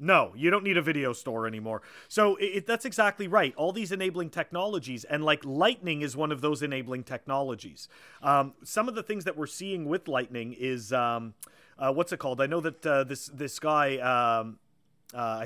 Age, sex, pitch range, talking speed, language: 30-49, male, 145-190 Hz, 200 wpm, English